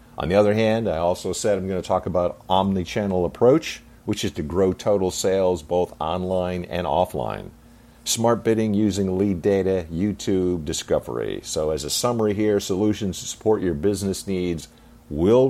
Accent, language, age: American, English, 50-69